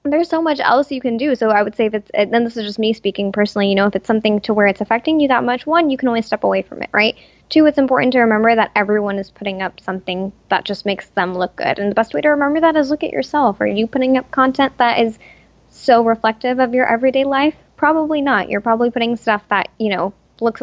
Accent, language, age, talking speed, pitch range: American, English, 10-29, 265 wpm, 205-265 Hz